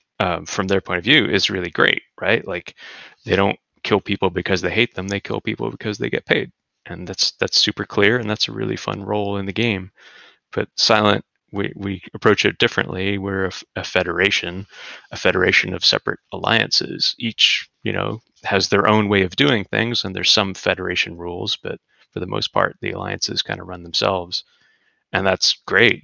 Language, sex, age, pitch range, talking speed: English, male, 30-49, 95-105 Hz, 195 wpm